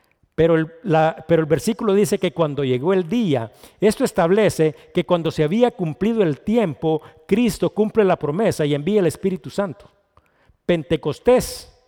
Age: 50-69